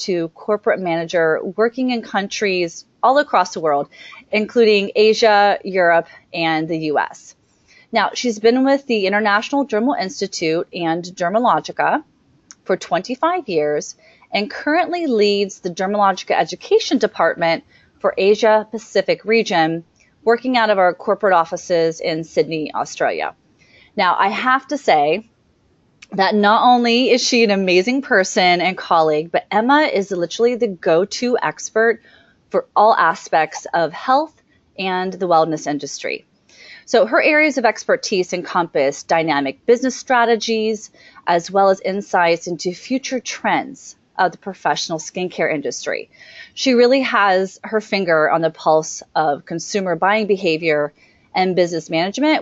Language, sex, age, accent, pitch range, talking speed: English, female, 30-49, American, 170-230 Hz, 135 wpm